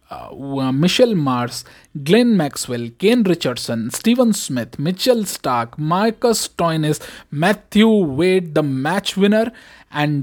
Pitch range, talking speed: 140-195 Hz, 105 wpm